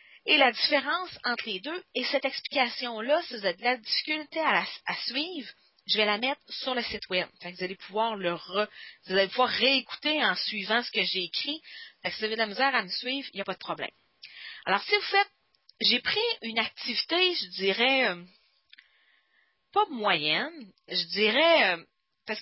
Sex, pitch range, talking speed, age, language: female, 200-290 Hz, 195 wpm, 40-59, English